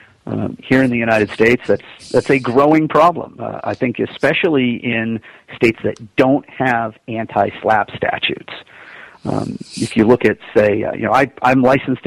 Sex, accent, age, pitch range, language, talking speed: male, American, 50-69, 110-130 Hz, English, 175 wpm